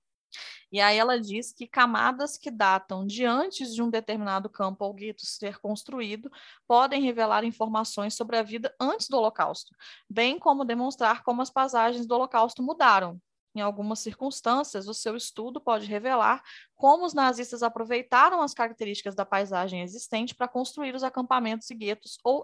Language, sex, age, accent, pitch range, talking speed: Portuguese, female, 20-39, Brazilian, 205-250 Hz, 160 wpm